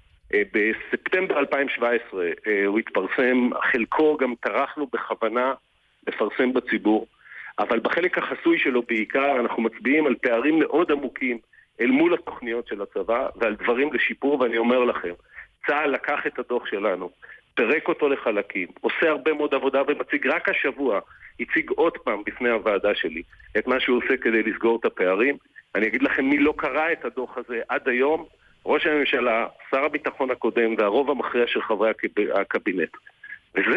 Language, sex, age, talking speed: Hebrew, male, 50-69, 150 wpm